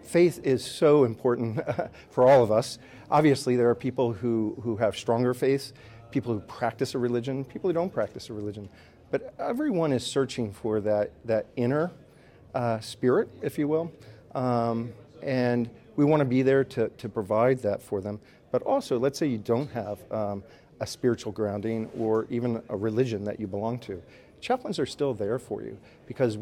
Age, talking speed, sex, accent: 50-69, 180 wpm, male, American